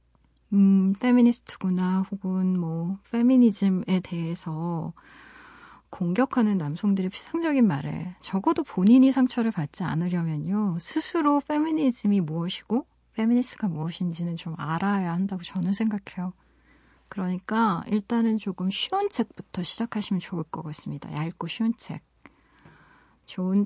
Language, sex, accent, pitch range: Korean, female, native, 175-235 Hz